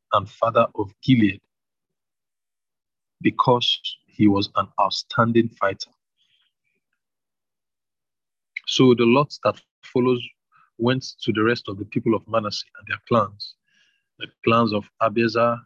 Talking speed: 120 wpm